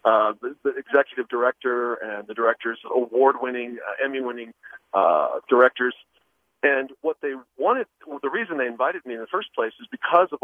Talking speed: 170 wpm